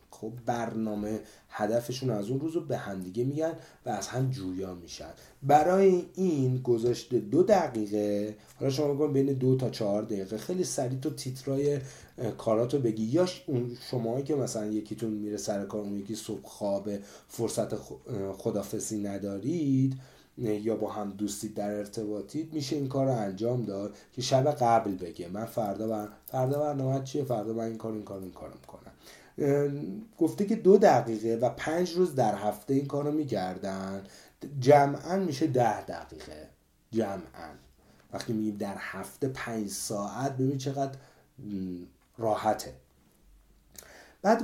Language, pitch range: Persian, 105-145 Hz